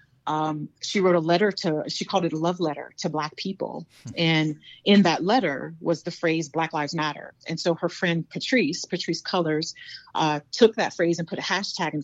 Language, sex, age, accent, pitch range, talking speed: English, female, 30-49, American, 155-195 Hz, 205 wpm